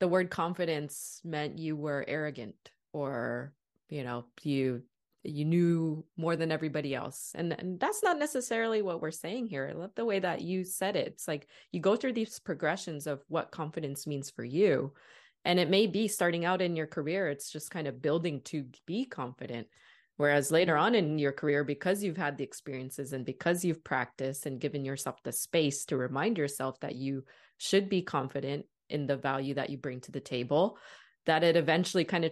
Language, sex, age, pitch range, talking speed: English, female, 20-39, 145-180 Hz, 195 wpm